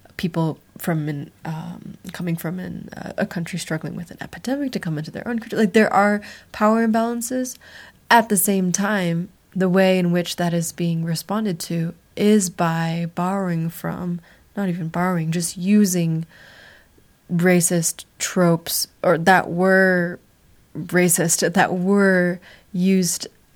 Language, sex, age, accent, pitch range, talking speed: English, female, 20-39, American, 170-195 Hz, 145 wpm